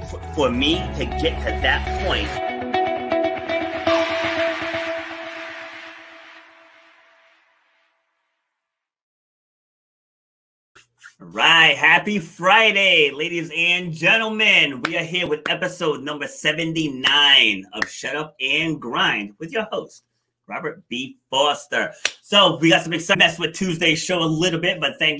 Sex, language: male, English